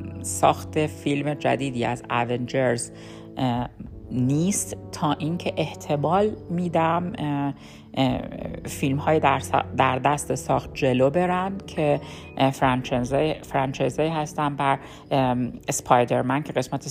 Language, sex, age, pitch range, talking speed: Persian, female, 50-69, 125-150 Hz, 80 wpm